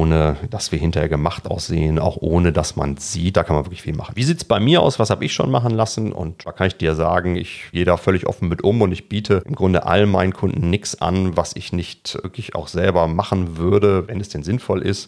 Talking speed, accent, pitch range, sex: 260 wpm, German, 85-100 Hz, male